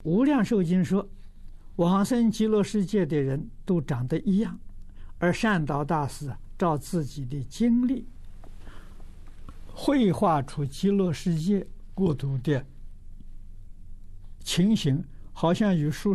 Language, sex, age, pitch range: Chinese, male, 60-79, 95-155 Hz